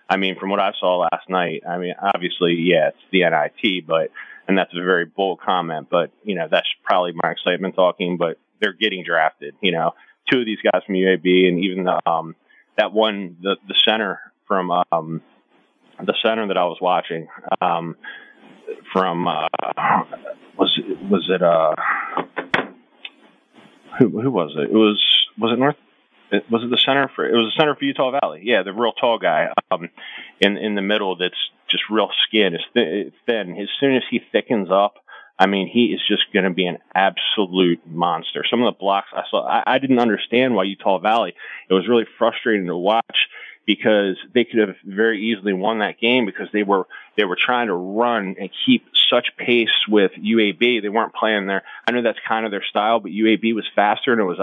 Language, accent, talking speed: English, American, 200 wpm